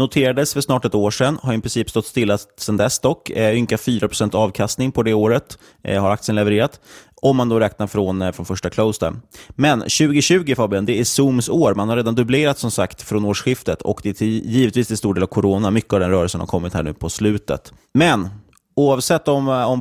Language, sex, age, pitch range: Swedish, male, 30-49, 95-120 Hz